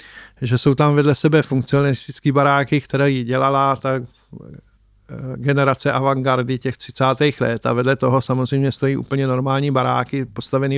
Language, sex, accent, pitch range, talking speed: Czech, male, native, 130-145 Hz, 130 wpm